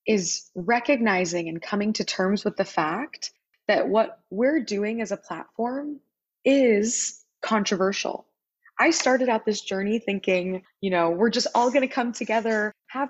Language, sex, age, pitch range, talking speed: English, female, 20-39, 190-235 Hz, 150 wpm